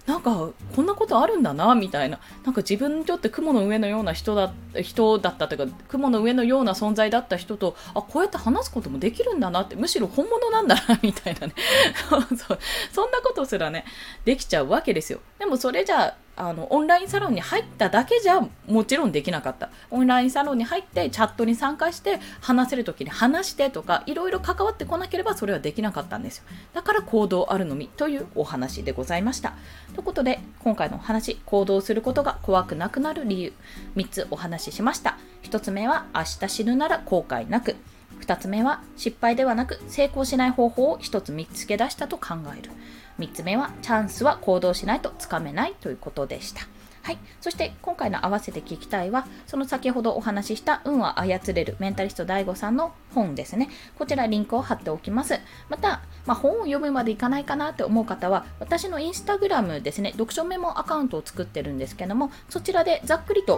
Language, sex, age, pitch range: Japanese, female, 20-39, 200-300 Hz